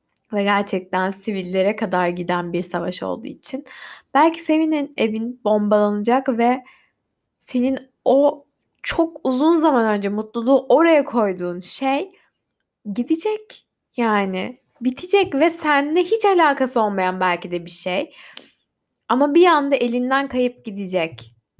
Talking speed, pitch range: 115 wpm, 190-275 Hz